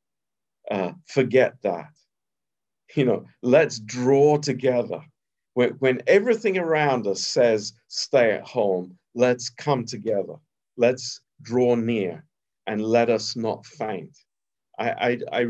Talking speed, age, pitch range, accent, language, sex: 120 wpm, 50-69, 115-145 Hz, British, Romanian, male